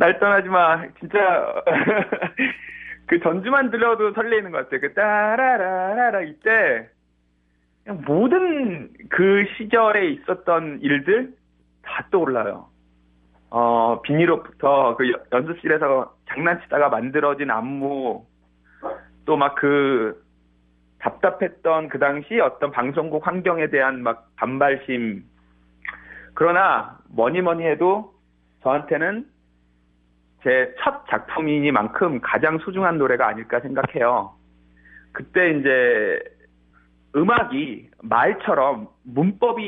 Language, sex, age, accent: Korean, male, 40-59, native